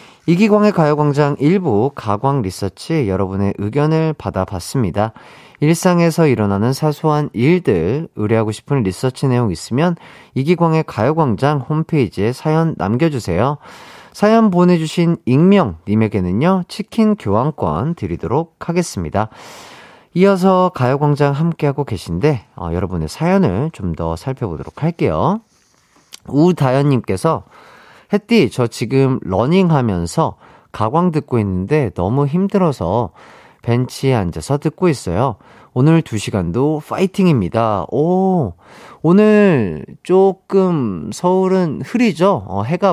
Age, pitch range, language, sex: 40-59, 110-170 Hz, Korean, male